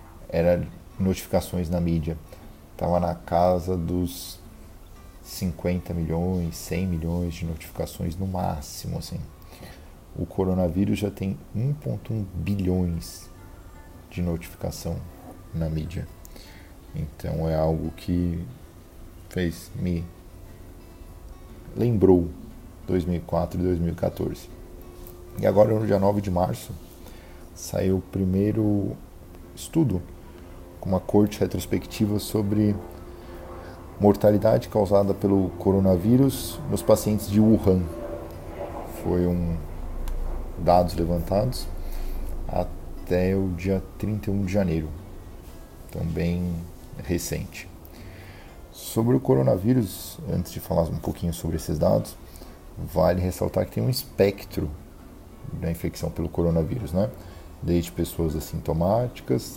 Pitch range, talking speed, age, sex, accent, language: 85-95 Hz, 100 wpm, 40-59, male, Brazilian, Portuguese